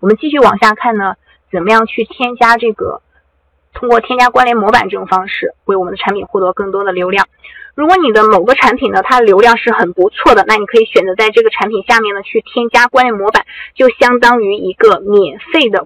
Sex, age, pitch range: female, 20-39, 185-250 Hz